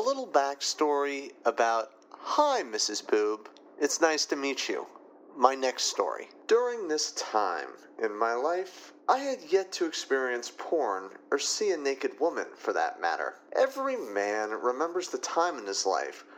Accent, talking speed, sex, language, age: American, 160 wpm, male, English, 40-59